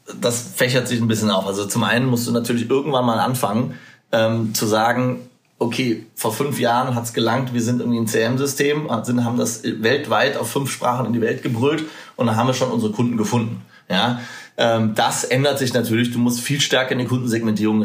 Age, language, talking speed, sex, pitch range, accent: 30-49, German, 200 wpm, male, 115-130 Hz, German